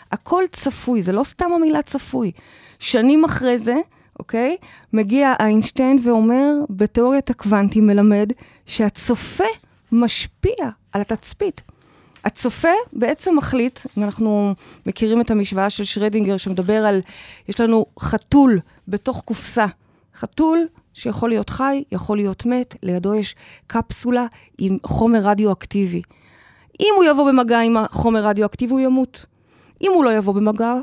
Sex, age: female, 20-39